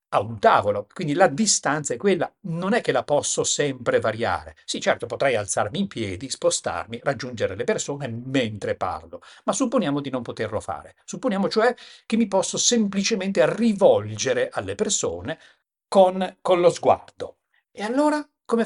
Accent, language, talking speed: native, Italian, 160 wpm